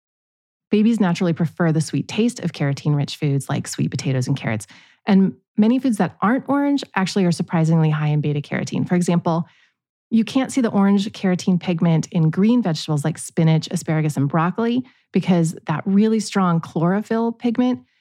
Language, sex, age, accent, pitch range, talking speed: English, female, 30-49, American, 160-210 Hz, 165 wpm